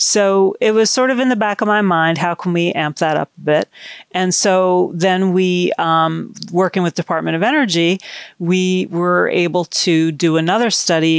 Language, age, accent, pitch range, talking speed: English, 40-59, American, 160-190 Hz, 195 wpm